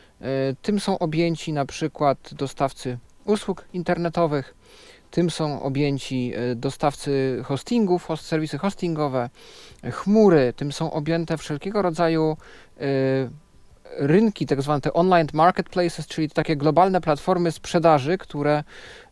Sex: male